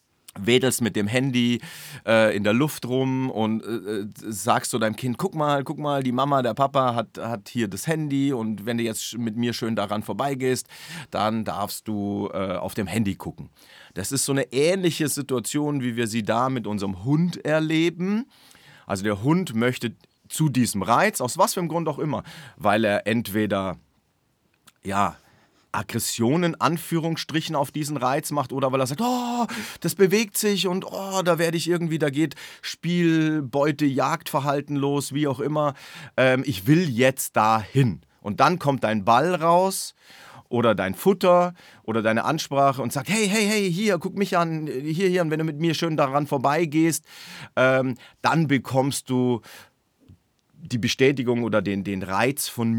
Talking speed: 170 wpm